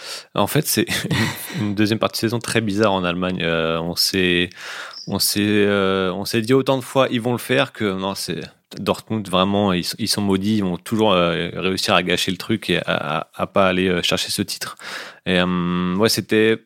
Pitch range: 90-110 Hz